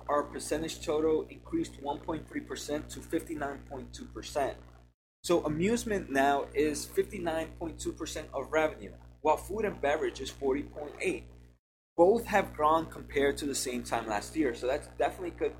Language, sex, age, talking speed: English, male, 20-39, 140 wpm